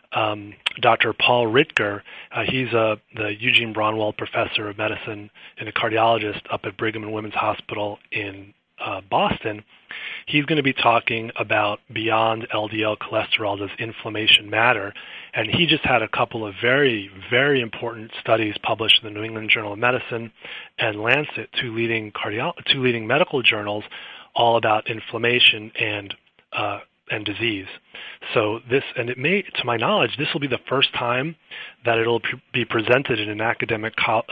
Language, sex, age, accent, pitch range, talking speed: English, male, 30-49, American, 105-120 Hz, 165 wpm